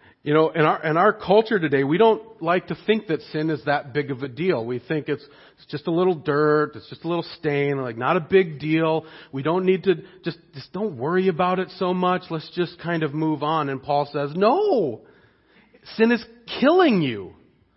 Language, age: English, 40-59